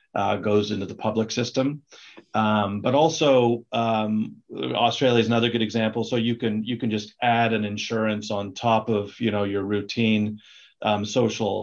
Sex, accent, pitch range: male, American, 105-115 Hz